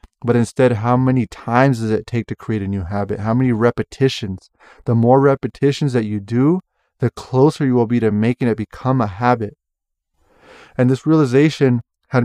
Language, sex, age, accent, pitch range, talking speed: English, male, 20-39, American, 110-130 Hz, 180 wpm